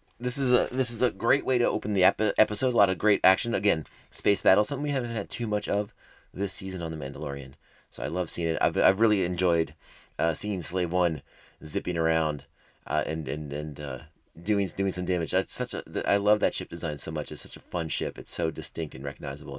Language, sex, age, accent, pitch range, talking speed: English, male, 30-49, American, 80-105 Hz, 235 wpm